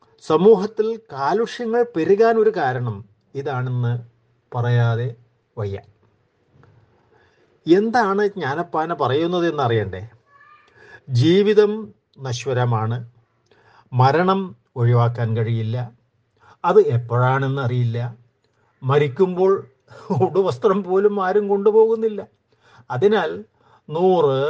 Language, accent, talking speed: Malayalam, native, 65 wpm